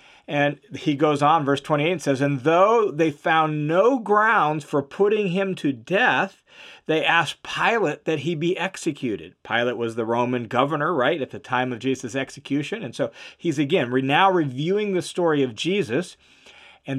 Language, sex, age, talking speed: English, male, 40-59, 175 wpm